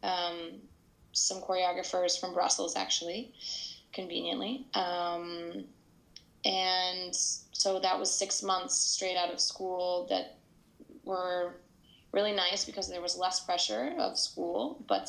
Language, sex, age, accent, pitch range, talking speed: English, female, 20-39, American, 170-190 Hz, 120 wpm